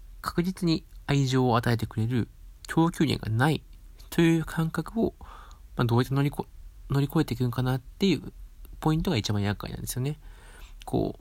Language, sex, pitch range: Japanese, male, 105-150 Hz